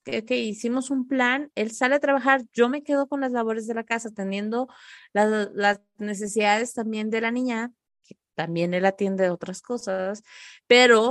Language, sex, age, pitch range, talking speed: Spanish, female, 30-49, 210-270 Hz, 180 wpm